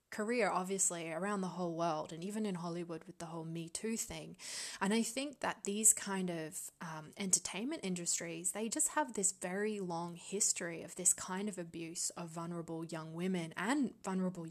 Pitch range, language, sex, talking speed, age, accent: 170-210 Hz, English, female, 180 wpm, 20-39, Australian